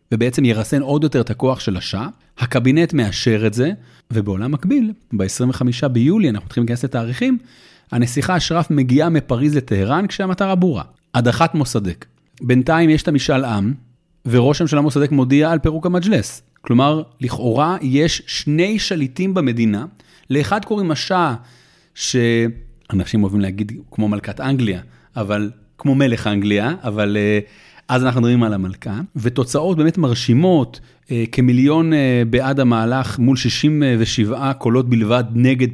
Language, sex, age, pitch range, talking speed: Hebrew, male, 30-49, 115-155 Hz, 135 wpm